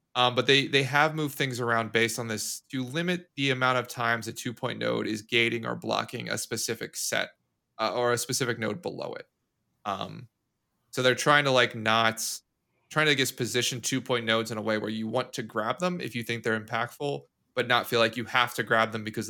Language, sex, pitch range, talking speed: English, male, 110-130 Hz, 225 wpm